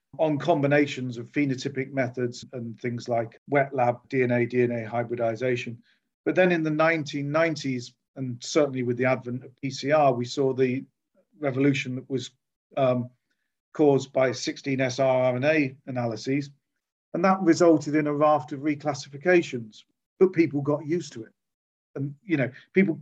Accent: British